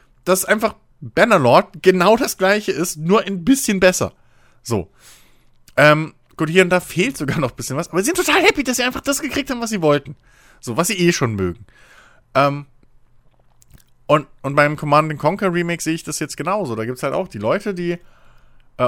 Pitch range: 125-185 Hz